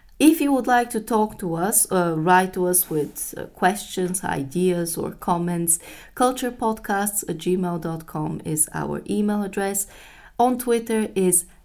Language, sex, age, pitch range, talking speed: English, female, 20-39, 165-200 Hz, 145 wpm